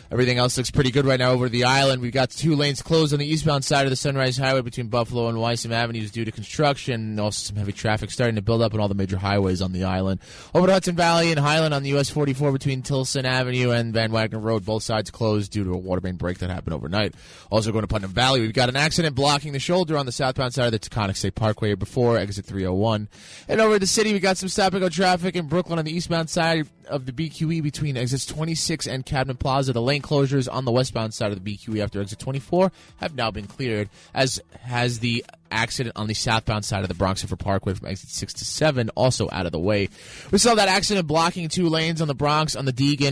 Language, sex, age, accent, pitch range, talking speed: English, male, 20-39, American, 105-145 Hz, 250 wpm